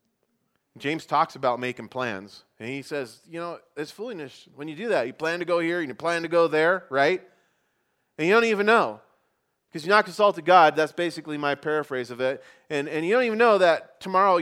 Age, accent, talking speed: 40-59, American, 215 wpm